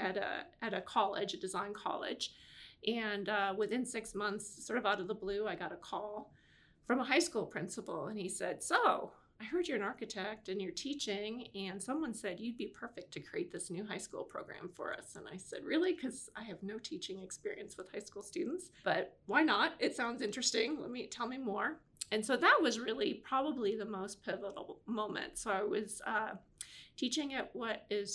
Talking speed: 210 wpm